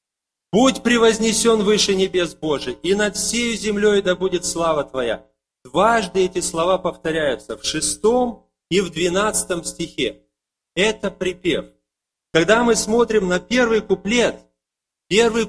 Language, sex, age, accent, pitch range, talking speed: Russian, male, 30-49, native, 150-215 Hz, 125 wpm